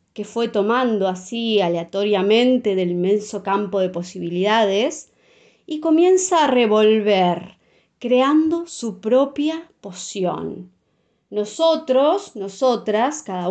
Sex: female